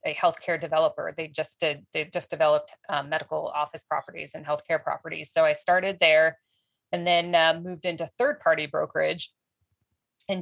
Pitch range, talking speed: 155-175 Hz, 160 wpm